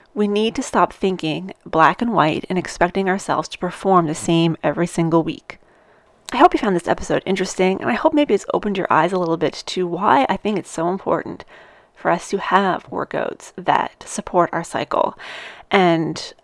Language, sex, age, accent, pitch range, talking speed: English, female, 30-49, American, 170-205 Hz, 195 wpm